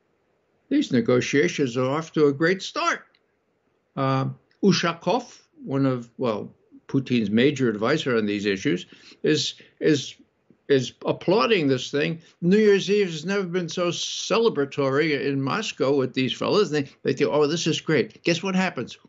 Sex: male